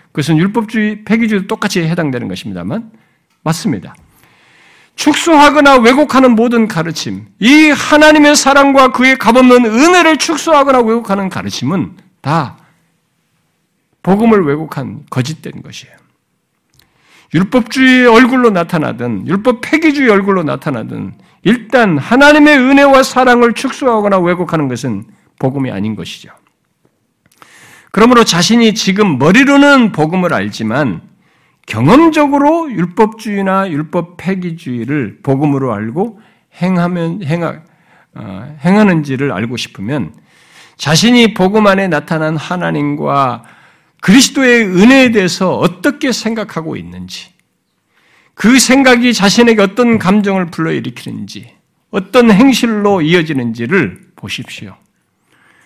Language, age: Korean, 50-69